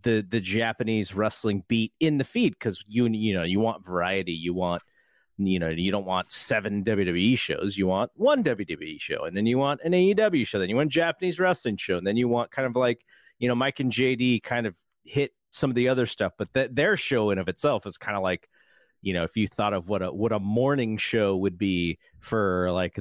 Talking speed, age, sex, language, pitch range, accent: 235 wpm, 30-49, male, English, 95-125 Hz, American